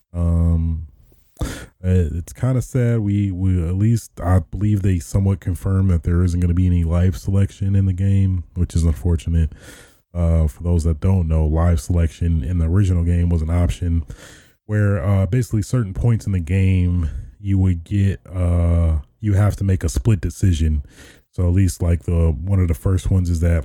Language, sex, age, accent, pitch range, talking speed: English, male, 20-39, American, 80-95 Hz, 195 wpm